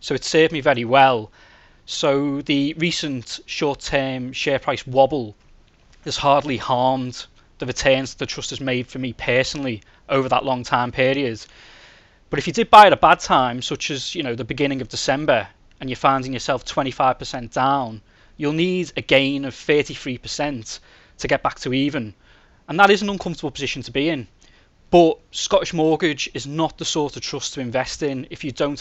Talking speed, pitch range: 200 wpm, 130-160 Hz